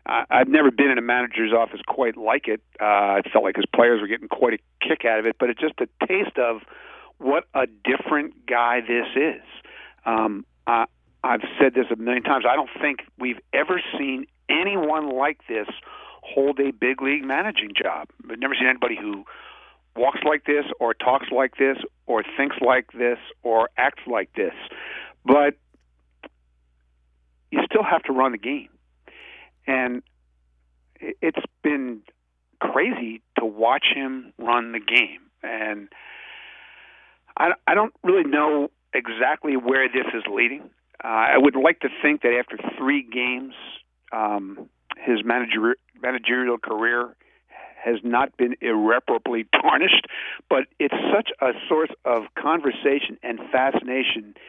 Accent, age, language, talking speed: American, 50-69, English, 150 wpm